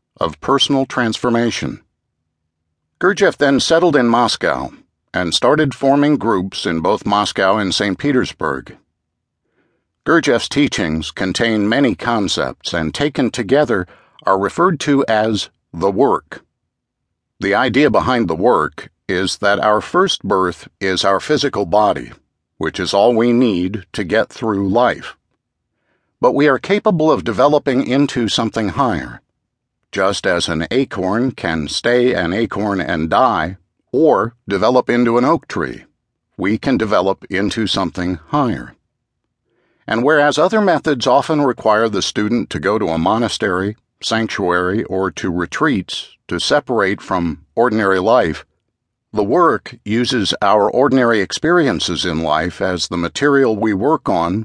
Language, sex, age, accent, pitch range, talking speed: English, male, 60-79, American, 95-120 Hz, 135 wpm